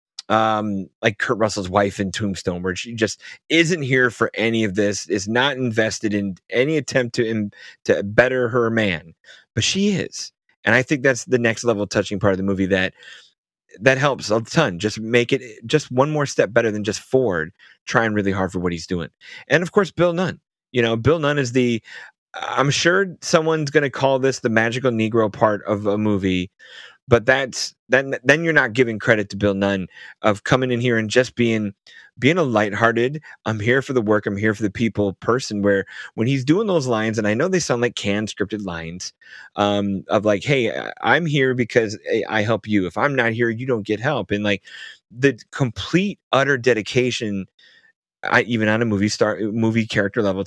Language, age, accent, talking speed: English, 30-49, American, 200 wpm